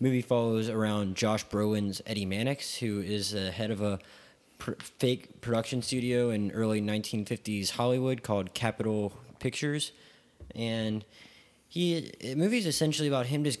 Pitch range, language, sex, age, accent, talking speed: 100-125 Hz, English, male, 20-39, American, 140 wpm